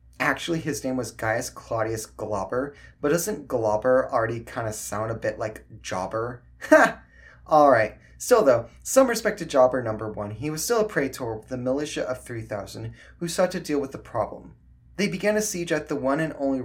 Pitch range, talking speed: 110-170 Hz, 195 wpm